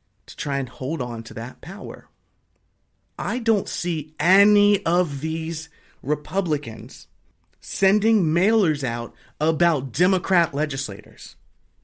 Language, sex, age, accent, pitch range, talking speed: English, male, 30-49, American, 115-165 Hz, 105 wpm